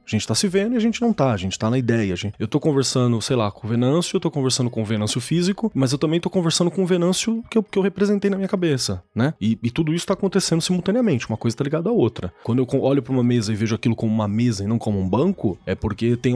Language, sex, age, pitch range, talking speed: Portuguese, male, 20-39, 120-170 Hz, 290 wpm